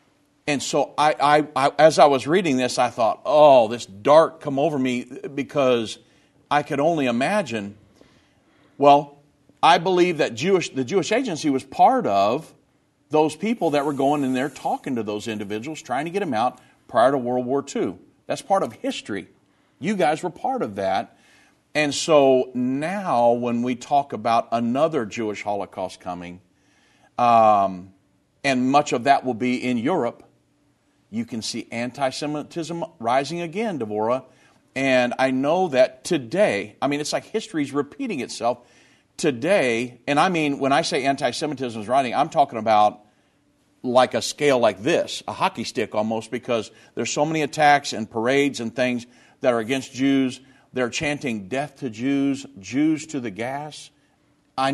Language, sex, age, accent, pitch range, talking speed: English, male, 40-59, American, 115-150 Hz, 165 wpm